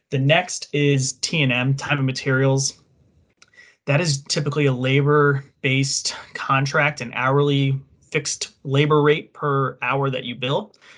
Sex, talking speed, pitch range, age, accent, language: male, 130 wpm, 125-140 Hz, 20-39, American, English